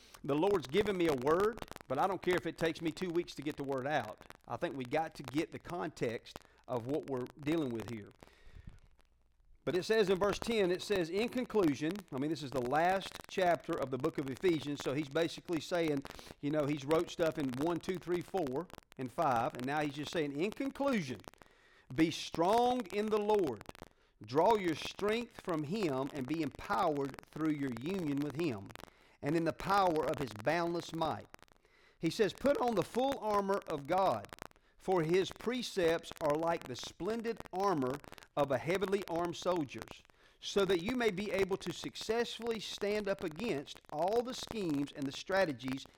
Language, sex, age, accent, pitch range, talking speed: English, male, 40-59, American, 145-200 Hz, 190 wpm